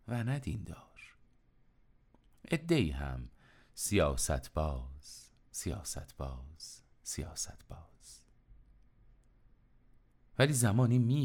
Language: Persian